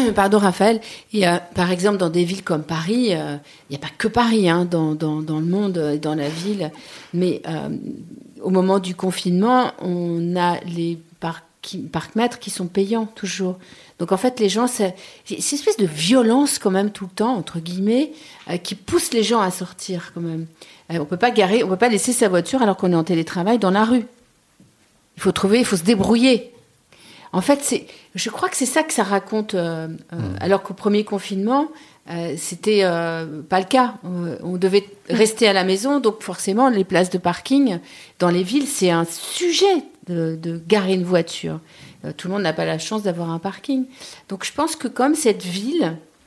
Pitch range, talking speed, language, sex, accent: 175-230 Hz, 210 wpm, French, female, French